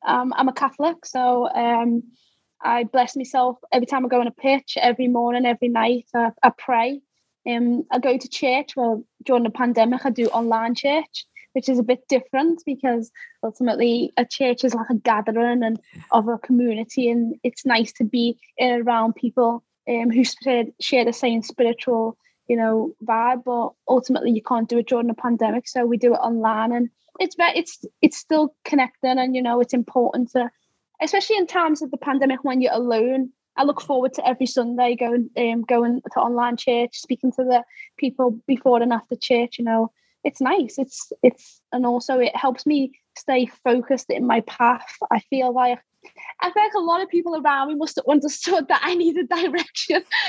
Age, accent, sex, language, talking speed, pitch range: 10-29, British, female, English, 190 wpm, 240-280 Hz